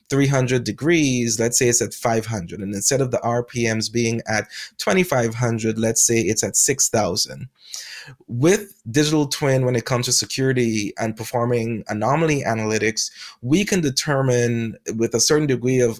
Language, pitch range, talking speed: English, 115-140 Hz, 150 wpm